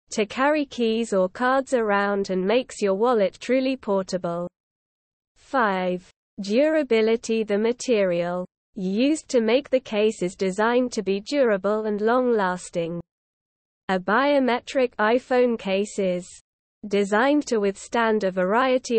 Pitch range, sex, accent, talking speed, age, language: 195-250 Hz, female, British, 120 wpm, 20-39, English